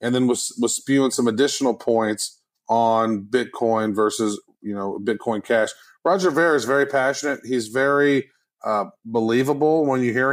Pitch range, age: 115-145 Hz, 30-49